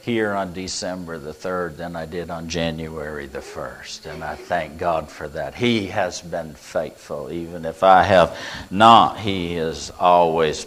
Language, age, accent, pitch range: English, 50-69, American, 85-110 Hz